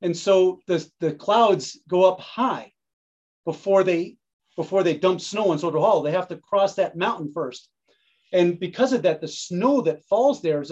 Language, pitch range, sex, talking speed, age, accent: English, 160-195 Hz, male, 190 wpm, 40-59, American